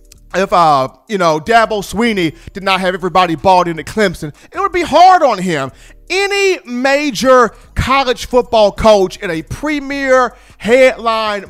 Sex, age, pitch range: male, 40-59, 185-280 Hz